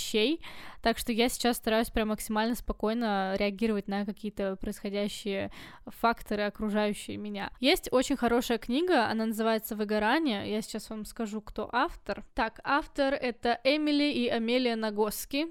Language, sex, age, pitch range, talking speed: Russian, female, 10-29, 220-265 Hz, 140 wpm